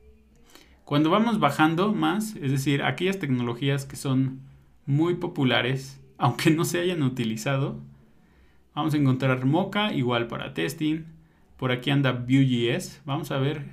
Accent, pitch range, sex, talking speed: Mexican, 125-160 Hz, male, 135 wpm